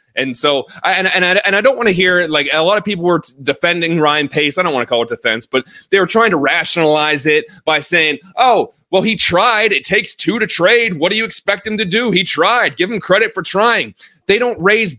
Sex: male